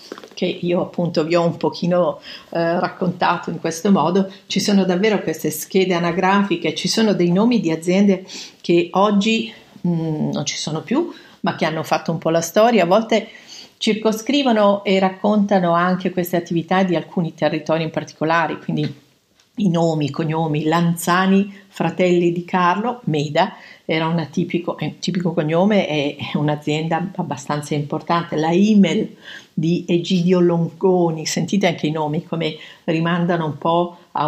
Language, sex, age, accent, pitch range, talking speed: Italian, female, 50-69, native, 160-195 Hz, 145 wpm